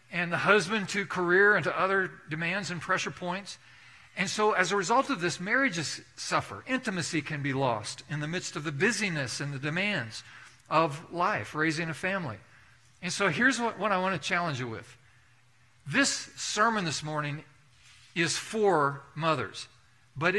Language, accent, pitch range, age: English, American, 135-180 Hz, 50-69